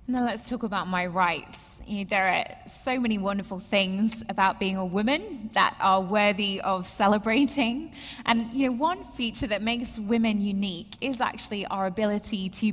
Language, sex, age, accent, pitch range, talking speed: English, female, 20-39, British, 220-280 Hz, 175 wpm